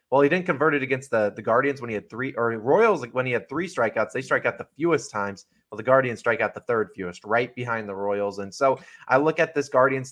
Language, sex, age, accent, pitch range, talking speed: English, male, 30-49, American, 120-150 Hz, 275 wpm